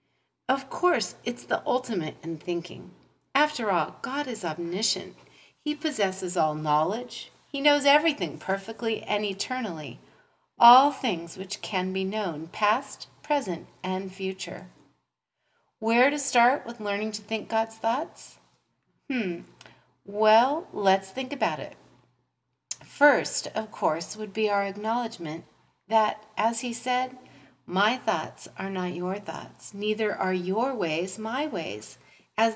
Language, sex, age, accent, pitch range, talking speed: English, female, 40-59, American, 180-245 Hz, 130 wpm